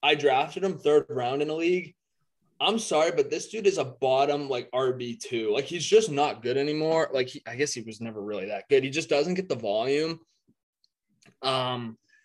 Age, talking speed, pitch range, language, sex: 20-39, 200 wpm, 125-165 Hz, English, male